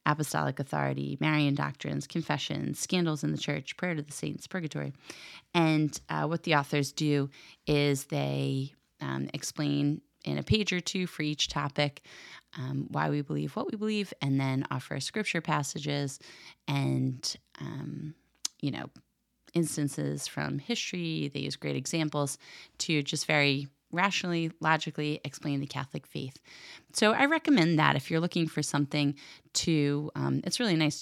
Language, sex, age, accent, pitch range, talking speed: English, female, 30-49, American, 135-160 Hz, 150 wpm